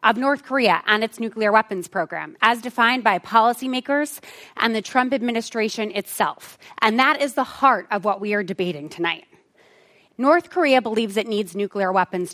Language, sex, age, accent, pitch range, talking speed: English, female, 20-39, American, 200-275 Hz, 170 wpm